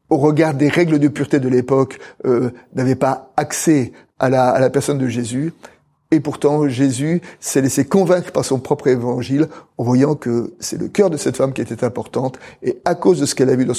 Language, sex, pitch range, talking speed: French, male, 130-160 Hz, 220 wpm